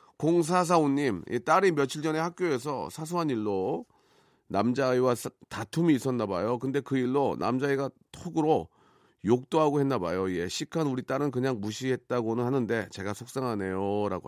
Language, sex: Korean, male